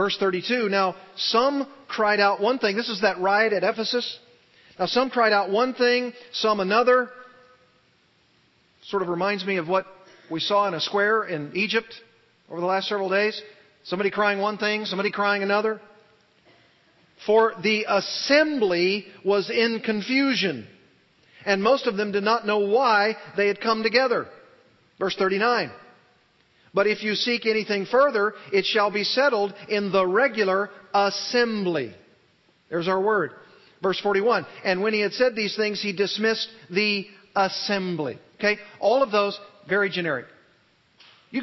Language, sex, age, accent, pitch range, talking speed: English, male, 40-59, American, 195-230 Hz, 155 wpm